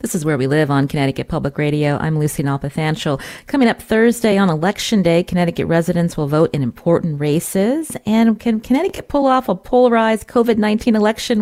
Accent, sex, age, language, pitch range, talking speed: American, female, 40-59, English, 150-195 Hz, 180 wpm